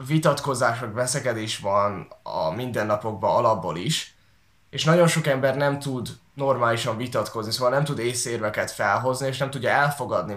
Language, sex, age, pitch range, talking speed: Hungarian, male, 10-29, 115-155 Hz, 140 wpm